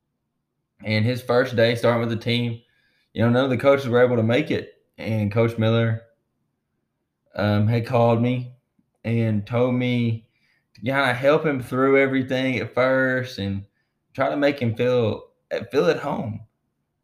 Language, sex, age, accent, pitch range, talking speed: English, male, 20-39, American, 105-120 Hz, 175 wpm